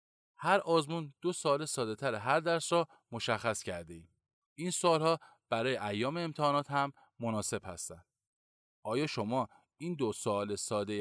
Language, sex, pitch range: Persian, male, 110-165 Hz